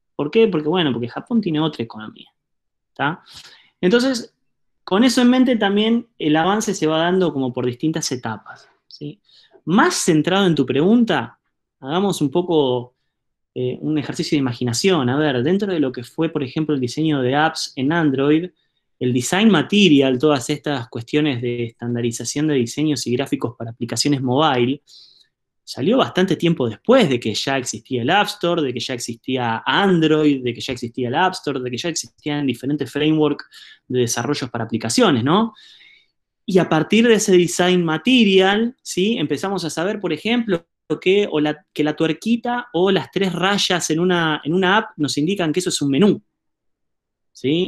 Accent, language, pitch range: Argentinian, Spanish, 125-180 Hz